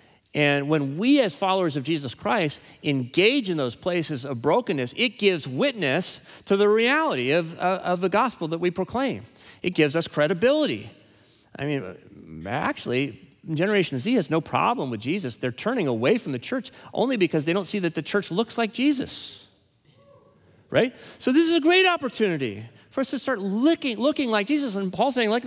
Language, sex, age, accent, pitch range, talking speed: English, male, 40-59, American, 120-205 Hz, 185 wpm